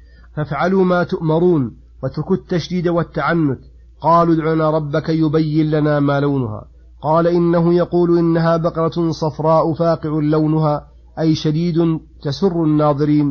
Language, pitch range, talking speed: Arabic, 145-165 Hz, 115 wpm